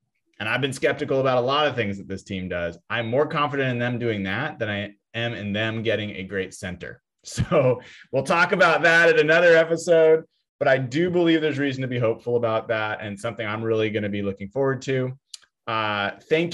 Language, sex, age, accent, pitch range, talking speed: English, male, 20-39, American, 105-145 Hz, 220 wpm